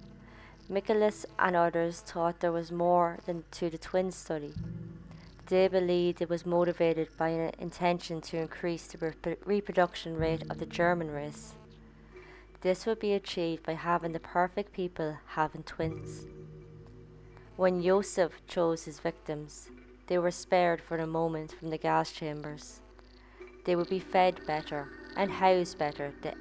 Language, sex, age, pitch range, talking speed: English, female, 20-39, 160-180 Hz, 150 wpm